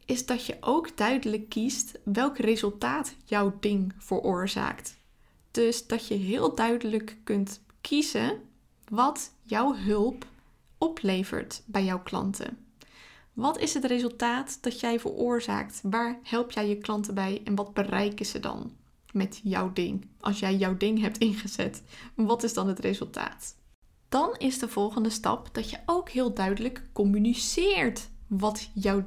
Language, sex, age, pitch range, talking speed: Dutch, female, 20-39, 205-245 Hz, 145 wpm